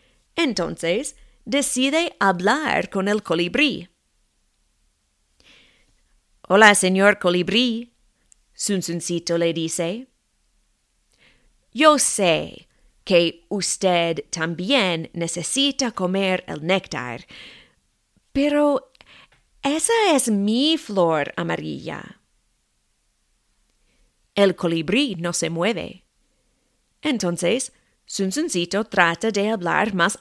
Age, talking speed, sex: 30-49, 75 wpm, female